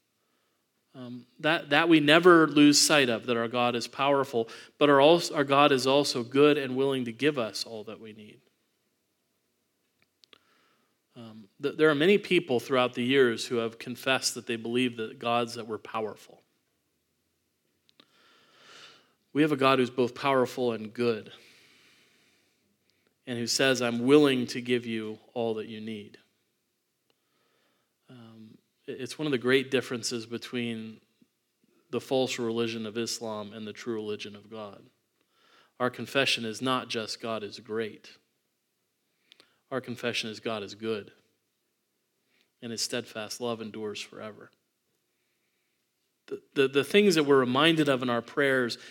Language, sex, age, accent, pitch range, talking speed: English, male, 40-59, American, 115-135 Hz, 145 wpm